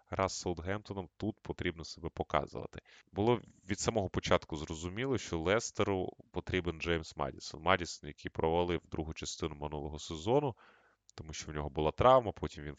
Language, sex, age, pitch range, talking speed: Ukrainian, male, 20-39, 80-100 Hz, 145 wpm